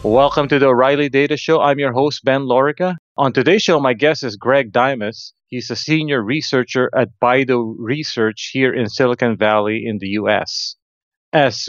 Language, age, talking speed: English, 40-59, 175 wpm